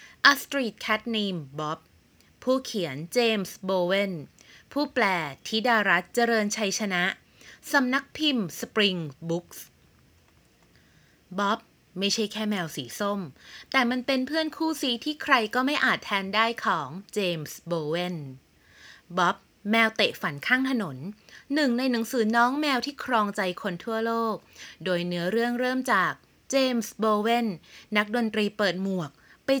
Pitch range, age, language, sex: 180-250 Hz, 20-39, Thai, female